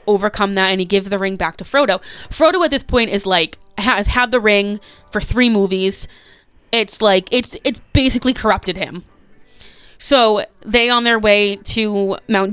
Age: 20-39